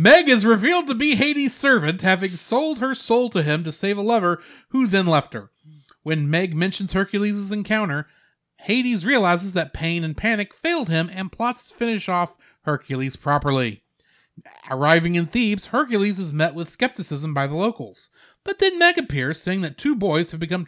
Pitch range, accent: 150-225 Hz, American